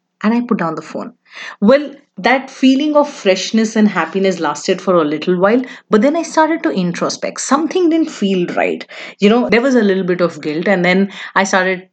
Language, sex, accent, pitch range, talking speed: English, female, Indian, 175-230 Hz, 205 wpm